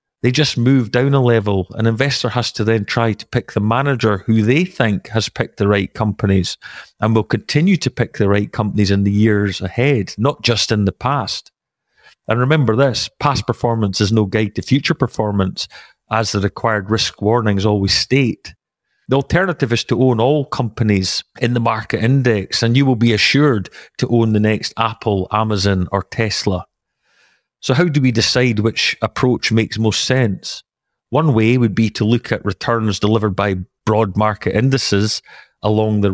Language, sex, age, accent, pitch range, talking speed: English, male, 40-59, British, 105-125 Hz, 180 wpm